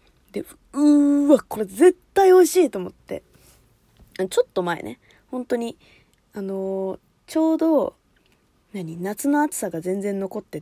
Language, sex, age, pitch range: Japanese, female, 20-39, 185-285 Hz